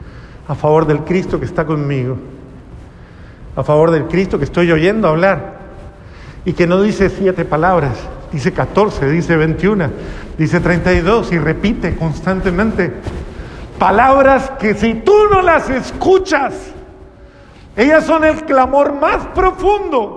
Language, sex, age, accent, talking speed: Spanish, male, 50-69, Mexican, 135 wpm